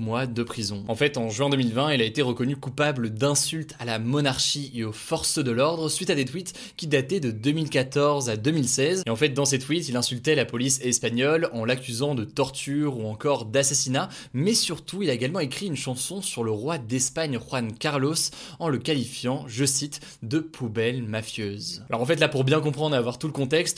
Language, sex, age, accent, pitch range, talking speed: French, male, 20-39, French, 120-155 Hz, 215 wpm